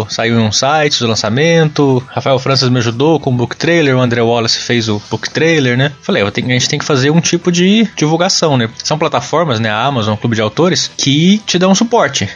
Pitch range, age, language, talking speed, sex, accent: 120-160 Hz, 20-39, Portuguese, 215 wpm, male, Brazilian